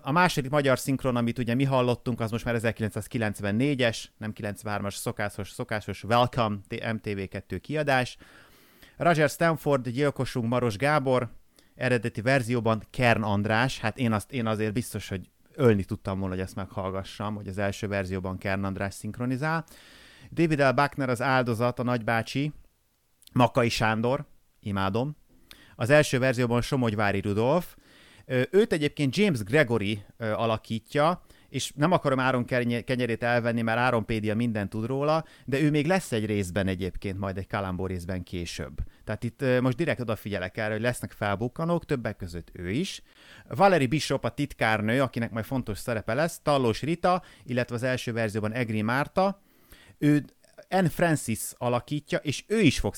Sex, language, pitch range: male, Hungarian, 105-135 Hz